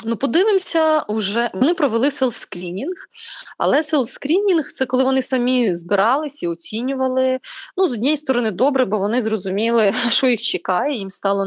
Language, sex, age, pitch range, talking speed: Ukrainian, female, 20-39, 210-300 Hz, 145 wpm